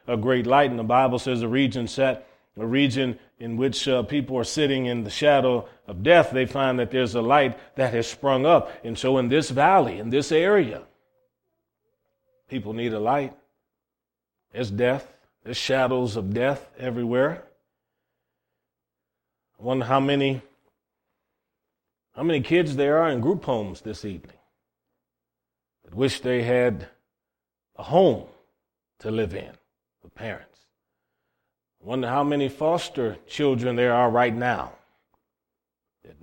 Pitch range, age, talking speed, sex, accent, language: 120-140 Hz, 40-59, 145 wpm, male, American, English